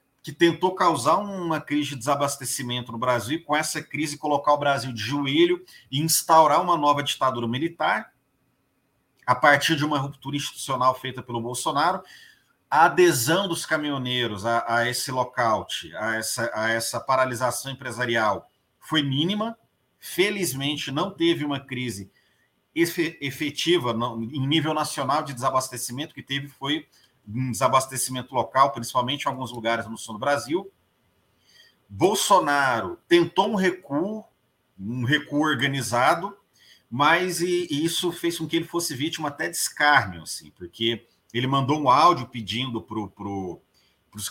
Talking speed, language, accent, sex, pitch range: 140 wpm, Portuguese, Brazilian, male, 120-155 Hz